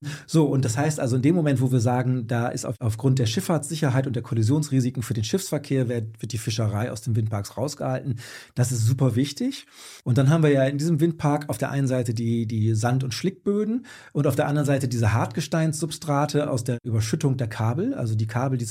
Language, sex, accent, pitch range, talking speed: German, male, German, 120-150 Hz, 215 wpm